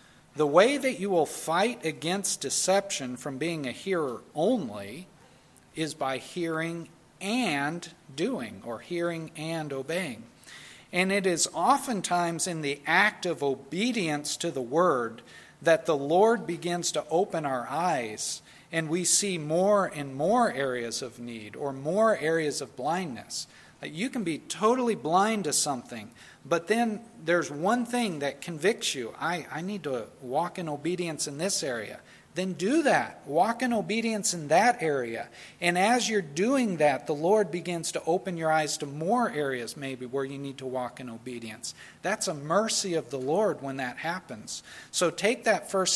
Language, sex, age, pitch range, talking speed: English, male, 40-59, 145-200 Hz, 165 wpm